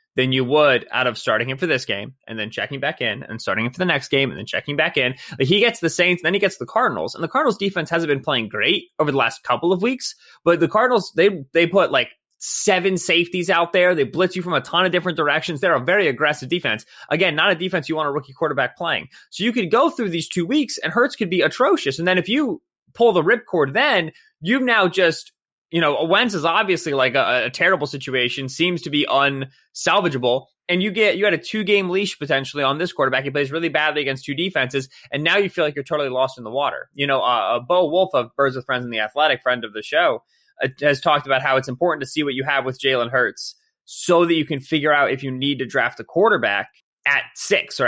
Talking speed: 250 wpm